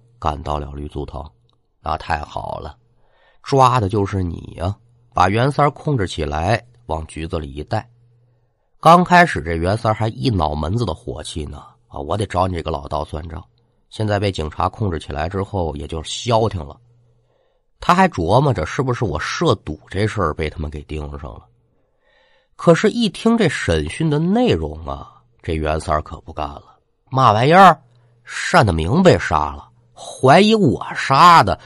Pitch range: 80-120 Hz